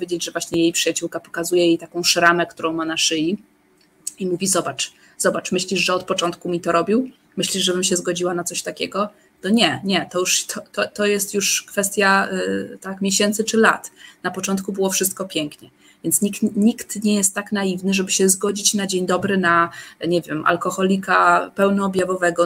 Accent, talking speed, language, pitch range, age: native, 185 wpm, Polish, 170-190 Hz, 20-39